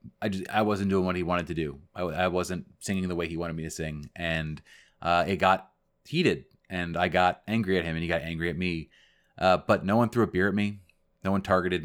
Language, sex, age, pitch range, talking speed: English, male, 30-49, 85-100 Hz, 255 wpm